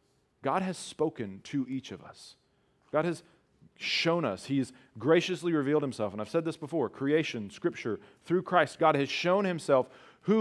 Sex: male